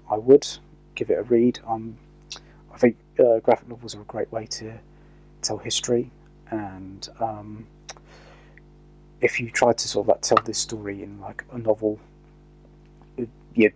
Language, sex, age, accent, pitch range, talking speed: English, male, 30-49, British, 105-115 Hz, 155 wpm